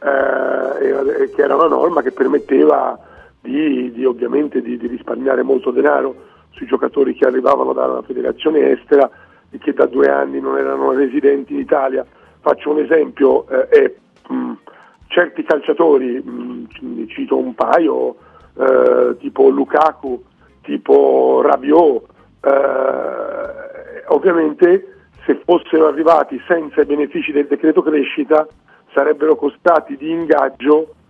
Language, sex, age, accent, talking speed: Italian, male, 40-59, native, 125 wpm